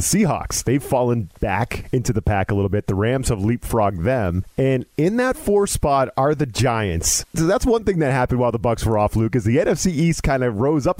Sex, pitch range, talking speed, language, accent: male, 115-155 Hz, 235 wpm, English, American